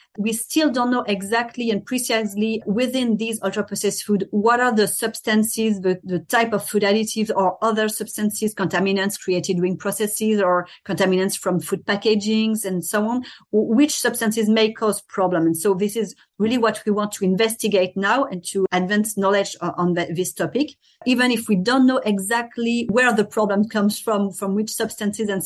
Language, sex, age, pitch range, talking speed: English, female, 40-59, 190-225 Hz, 175 wpm